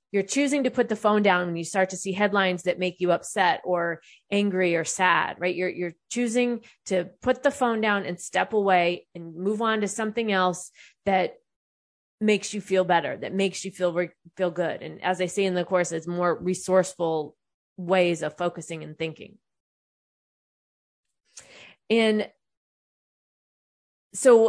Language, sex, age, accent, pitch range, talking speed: English, female, 20-39, American, 175-220 Hz, 165 wpm